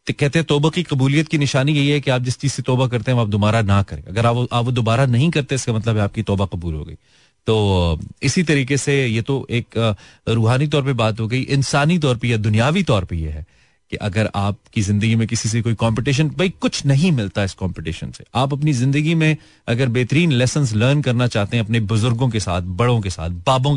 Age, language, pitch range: 30-49, Hindi, 100-135 Hz